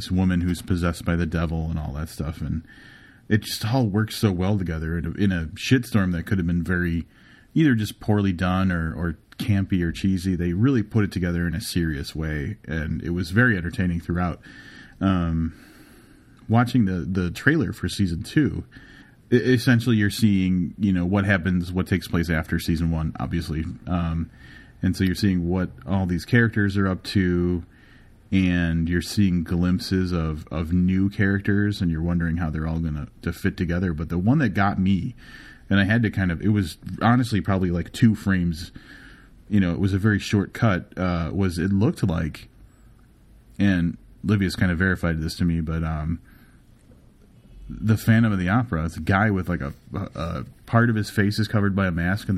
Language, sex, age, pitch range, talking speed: English, male, 30-49, 85-105 Hz, 190 wpm